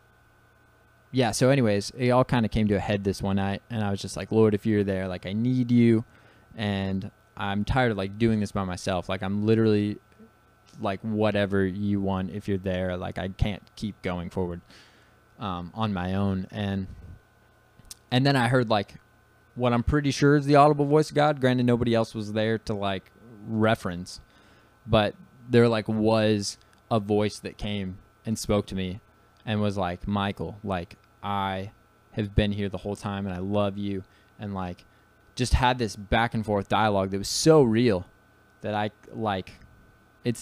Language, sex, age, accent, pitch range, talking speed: English, male, 20-39, American, 95-110 Hz, 185 wpm